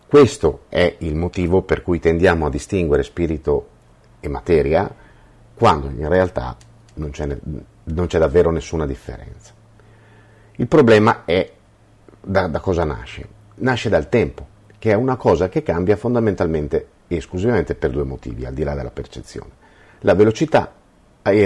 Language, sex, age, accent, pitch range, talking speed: Italian, male, 50-69, native, 80-115 Hz, 145 wpm